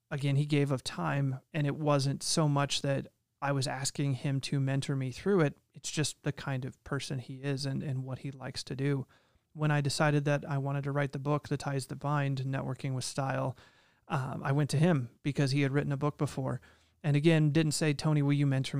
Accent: American